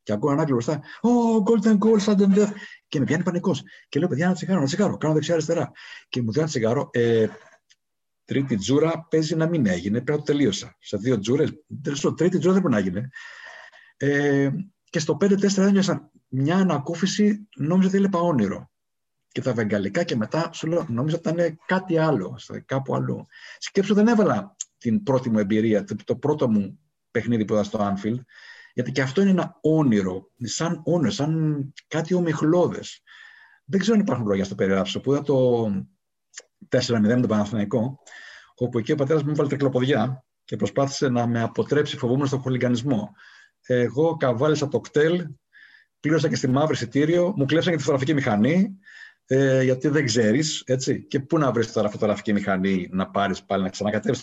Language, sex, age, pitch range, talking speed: Greek, male, 50-69, 120-170 Hz, 175 wpm